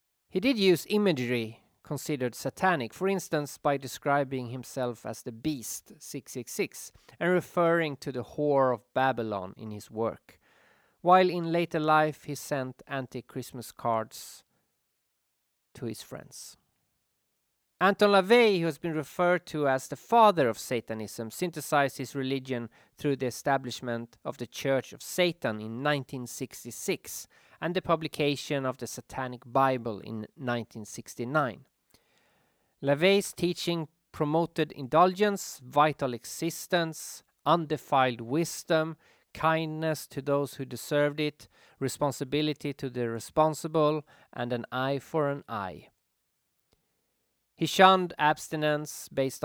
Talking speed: 120 wpm